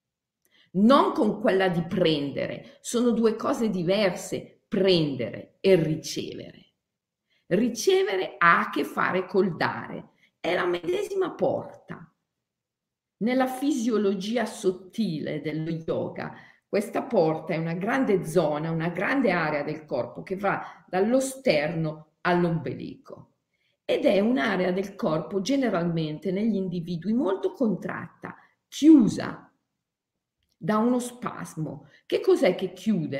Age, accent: 50-69, native